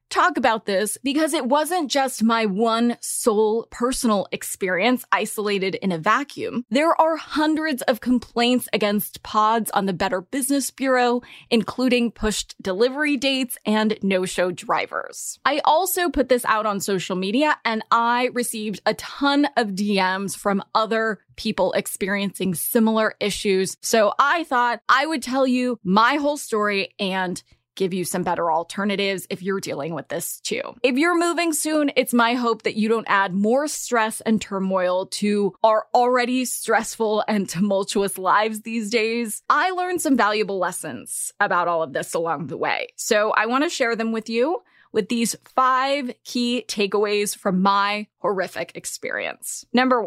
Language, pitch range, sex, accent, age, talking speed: English, 200-255 Hz, female, American, 20-39, 160 wpm